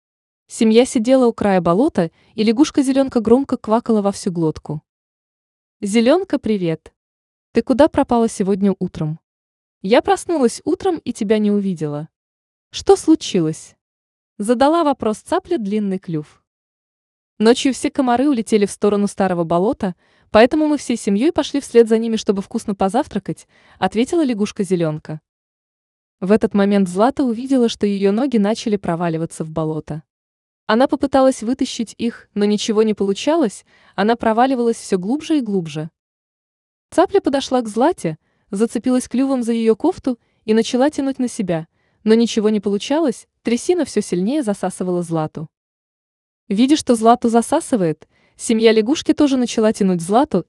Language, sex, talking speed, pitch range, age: Russian, female, 135 wpm, 190-260 Hz, 20-39